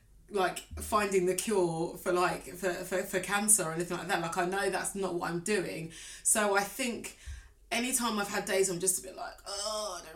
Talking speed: 220 wpm